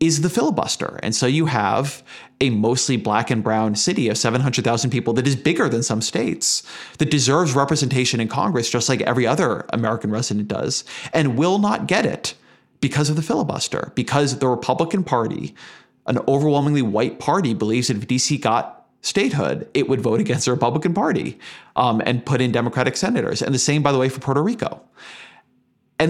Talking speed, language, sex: 185 wpm, English, male